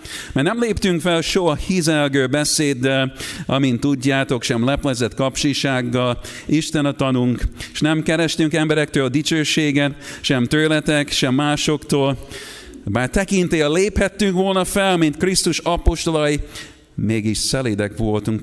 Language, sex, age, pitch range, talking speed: Hungarian, male, 50-69, 115-150 Hz, 115 wpm